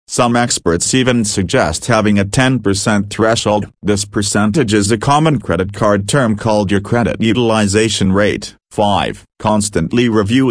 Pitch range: 95-115 Hz